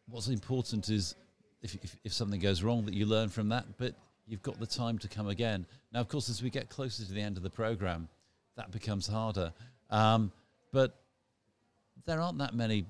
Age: 40-59